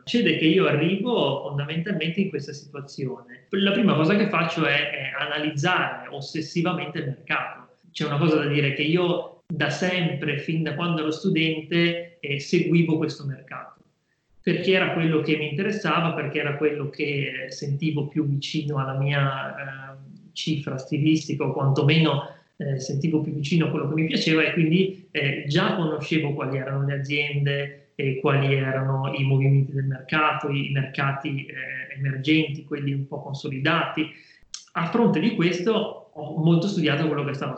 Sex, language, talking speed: male, Italian, 160 wpm